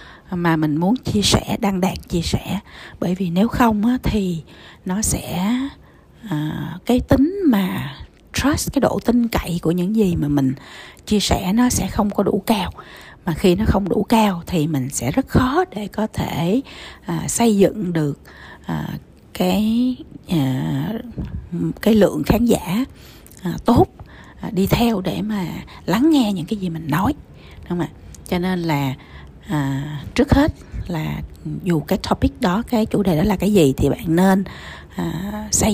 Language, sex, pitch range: Vietnamese, female, 145-210 Hz